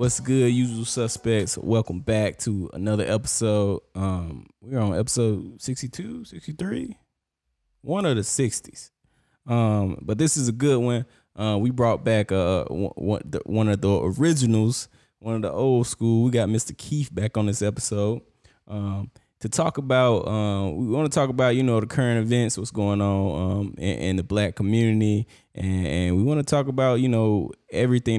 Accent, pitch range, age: American, 100-120 Hz, 20-39